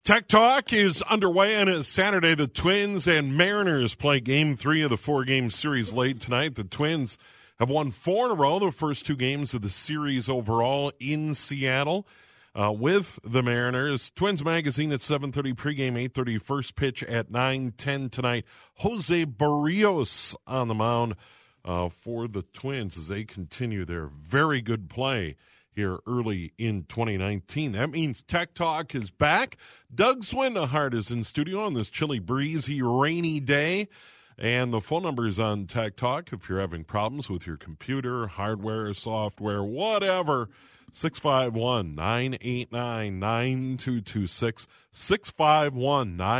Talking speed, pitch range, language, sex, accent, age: 140 wpm, 110-150 Hz, English, male, American, 40-59